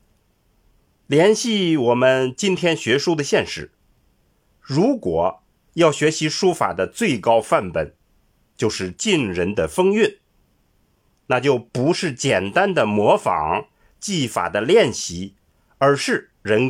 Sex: male